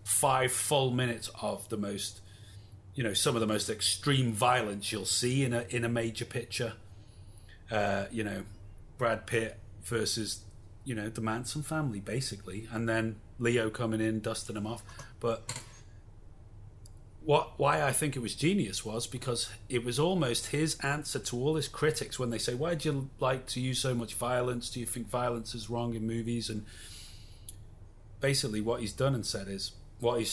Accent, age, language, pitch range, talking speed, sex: British, 30-49, English, 105-125 Hz, 180 wpm, male